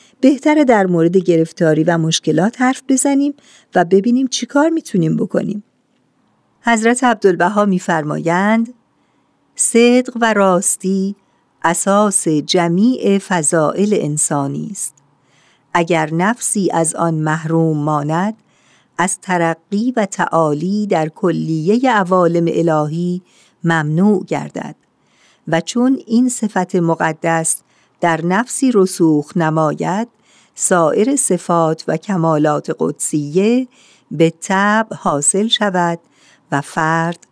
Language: Persian